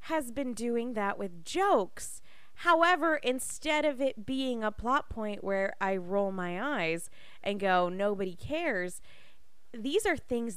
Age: 20-39